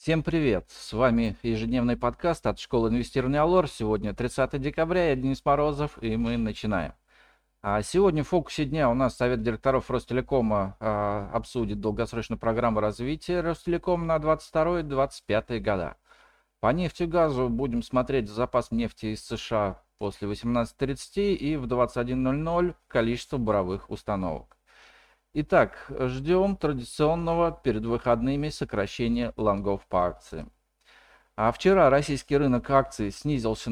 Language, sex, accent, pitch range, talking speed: Russian, male, native, 115-155 Hz, 125 wpm